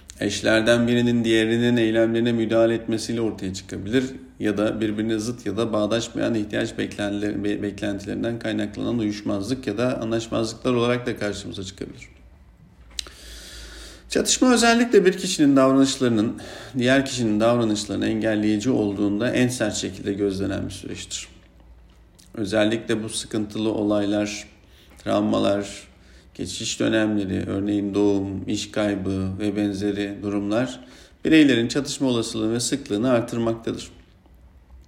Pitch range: 100-120 Hz